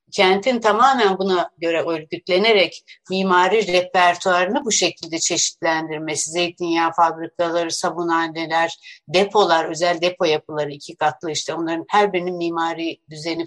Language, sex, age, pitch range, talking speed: Turkish, female, 60-79, 175-215 Hz, 110 wpm